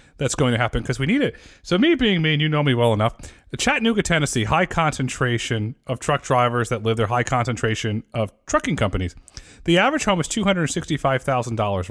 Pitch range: 115-165 Hz